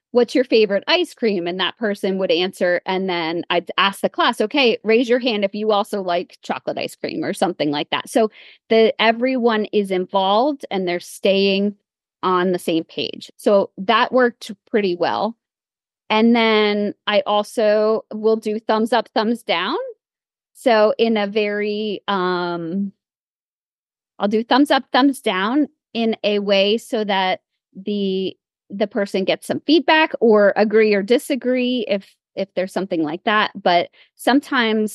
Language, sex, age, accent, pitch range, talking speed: English, female, 30-49, American, 185-230 Hz, 155 wpm